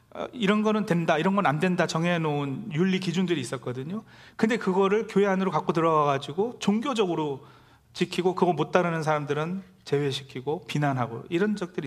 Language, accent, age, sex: Korean, native, 40-59, male